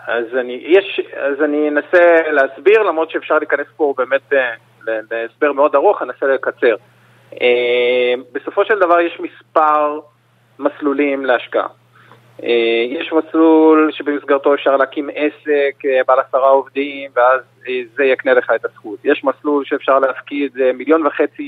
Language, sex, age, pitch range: Hebrew, male, 30-49, 135-170 Hz